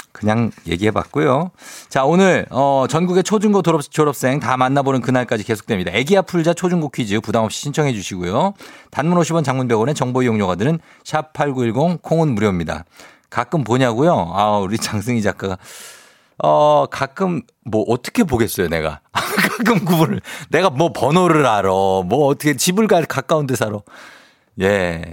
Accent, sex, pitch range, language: native, male, 105-165 Hz, Korean